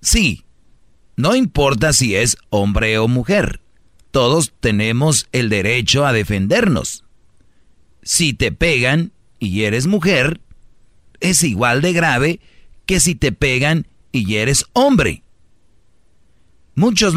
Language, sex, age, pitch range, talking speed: Spanish, male, 50-69, 110-150 Hz, 110 wpm